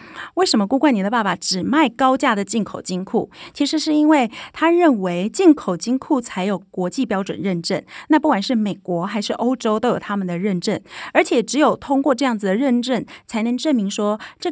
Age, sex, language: 30-49, female, Chinese